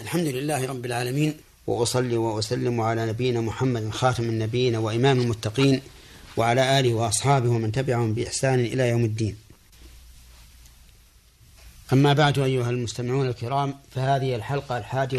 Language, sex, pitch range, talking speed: Arabic, male, 95-135 Hz, 120 wpm